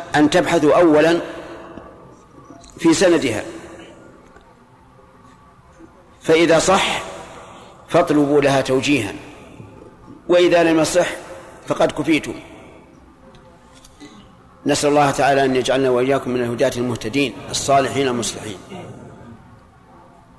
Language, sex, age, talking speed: Arabic, male, 50-69, 75 wpm